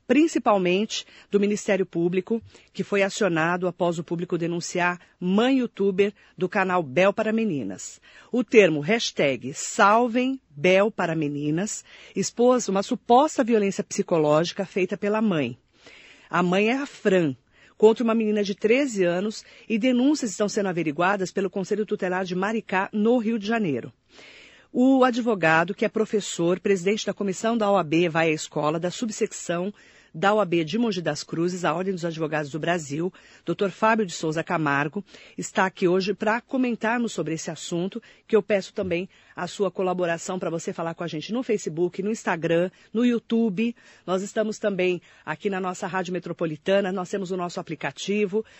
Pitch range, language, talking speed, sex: 175-215 Hz, Portuguese, 160 wpm, female